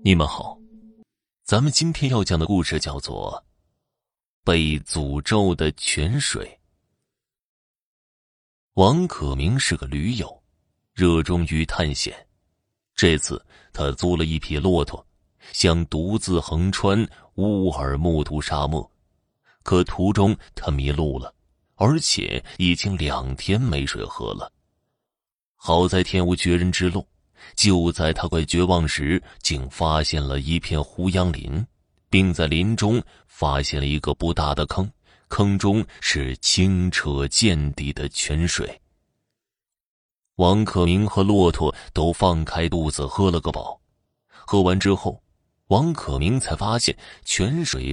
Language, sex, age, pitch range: Chinese, male, 30-49, 75-95 Hz